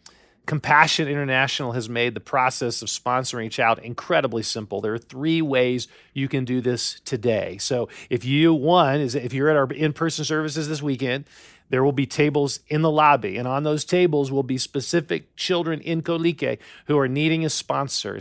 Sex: male